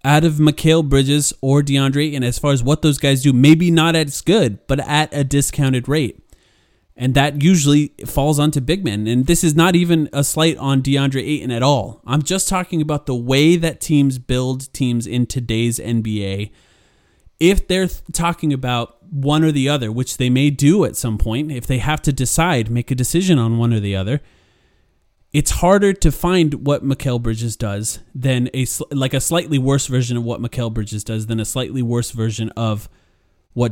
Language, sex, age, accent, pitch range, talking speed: English, male, 30-49, American, 120-150 Hz, 200 wpm